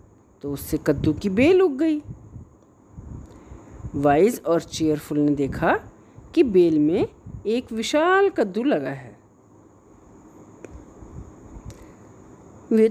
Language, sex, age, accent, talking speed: Hindi, female, 50-69, native, 100 wpm